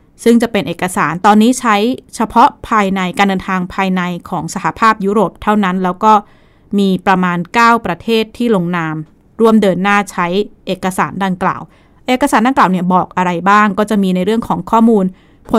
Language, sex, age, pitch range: Thai, female, 20-39, 185-225 Hz